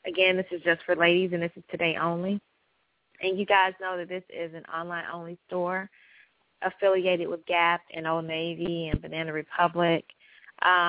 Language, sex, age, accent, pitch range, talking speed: English, female, 20-39, American, 170-195 Hz, 165 wpm